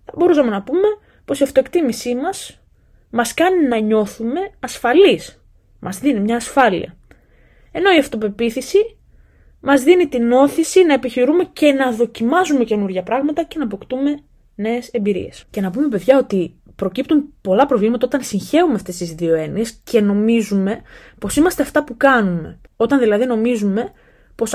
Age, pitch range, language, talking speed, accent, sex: 20-39, 215-315 Hz, Greek, 145 wpm, native, female